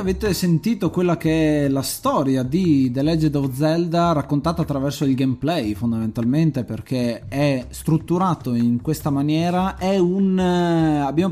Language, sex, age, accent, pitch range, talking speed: Italian, male, 20-39, native, 130-165 Hz, 140 wpm